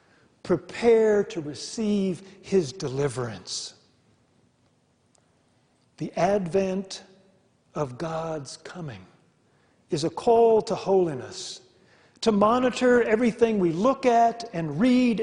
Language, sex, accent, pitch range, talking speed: English, male, American, 160-220 Hz, 90 wpm